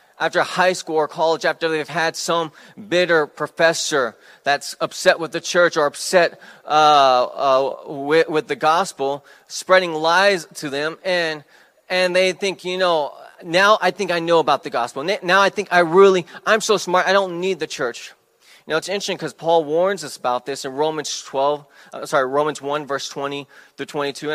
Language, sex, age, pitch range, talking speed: English, male, 20-39, 150-185 Hz, 185 wpm